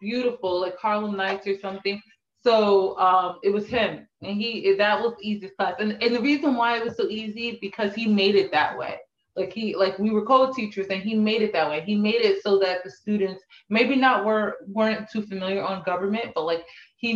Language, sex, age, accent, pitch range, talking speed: English, female, 20-39, American, 175-215 Hz, 215 wpm